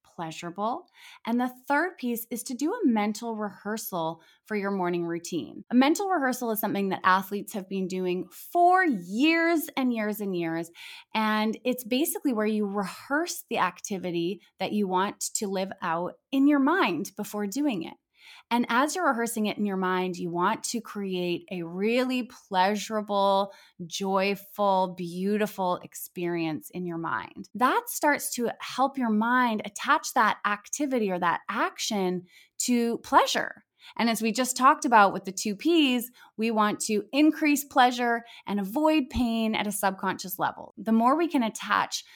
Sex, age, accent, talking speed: female, 20-39, American, 160 wpm